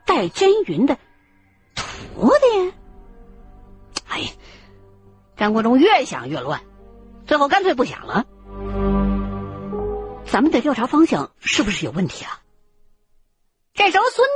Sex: female